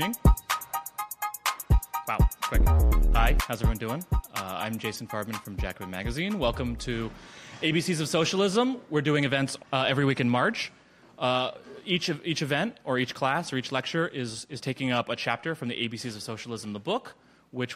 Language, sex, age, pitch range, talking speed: English, male, 30-49, 115-145 Hz, 170 wpm